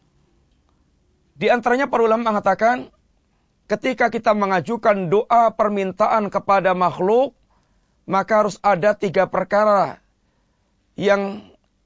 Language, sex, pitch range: Malay, male, 190-235 Hz